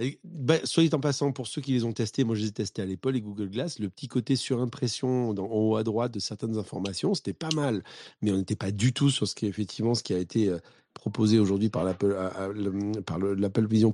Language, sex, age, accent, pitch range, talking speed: French, male, 40-59, French, 100-125 Hz, 270 wpm